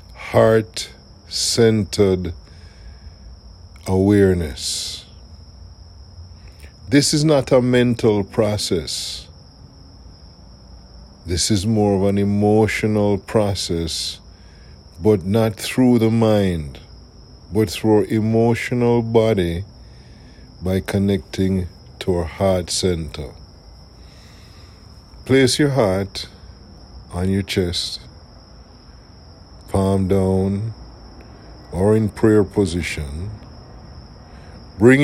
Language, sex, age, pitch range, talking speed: English, male, 50-69, 85-110 Hz, 75 wpm